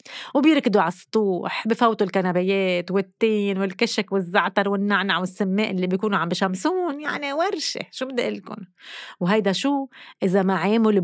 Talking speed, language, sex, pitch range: 135 wpm, Arabic, female, 185-240 Hz